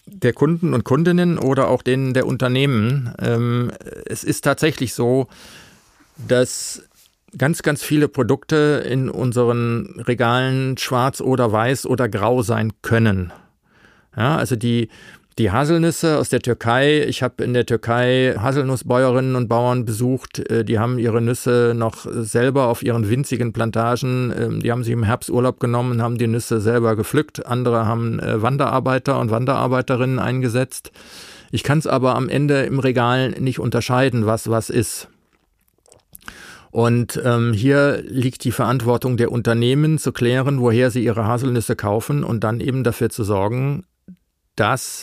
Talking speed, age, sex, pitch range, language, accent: 140 wpm, 40-59, male, 115-130 Hz, German, German